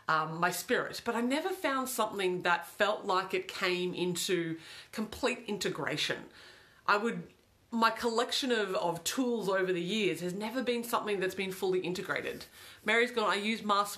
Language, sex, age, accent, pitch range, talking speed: English, female, 30-49, Australian, 180-245 Hz, 165 wpm